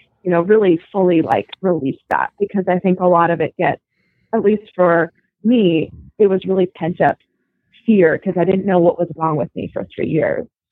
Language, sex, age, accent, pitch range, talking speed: English, female, 20-39, American, 165-190 Hz, 200 wpm